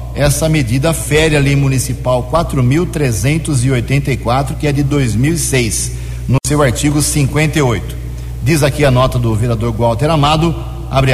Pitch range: 115-150 Hz